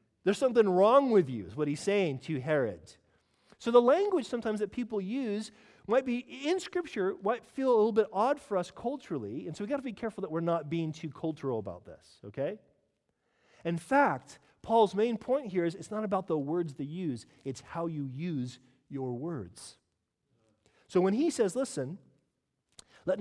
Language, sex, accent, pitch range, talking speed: English, male, American, 160-225 Hz, 190 wpm